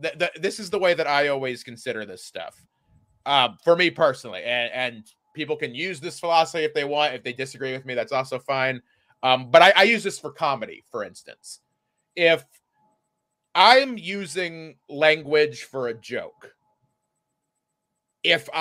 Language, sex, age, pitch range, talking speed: English, male, 30-49, 130-175 Hz, 160 wpm